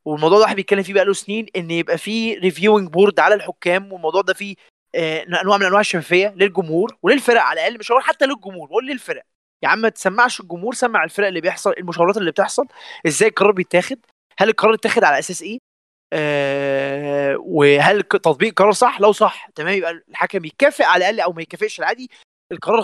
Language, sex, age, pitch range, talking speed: Arabic, male, 20-39, 175-225 Hz, 190 wpm